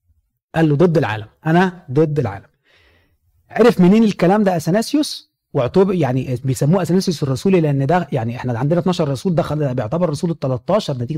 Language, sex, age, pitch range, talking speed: Arabic, male, 30-49, 130-185 Hz, 160 wpm